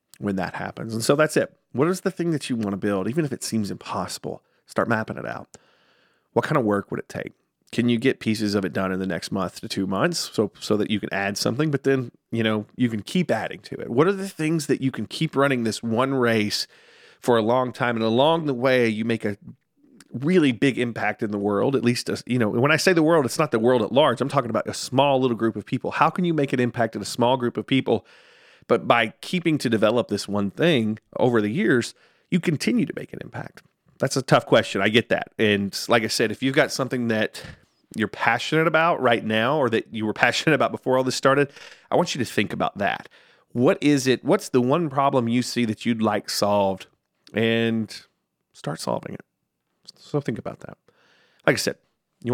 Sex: male